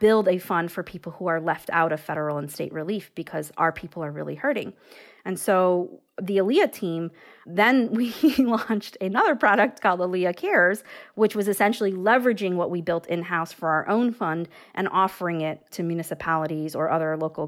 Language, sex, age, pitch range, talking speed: English, female, 30-49, 160-195 Hz, 180 wpm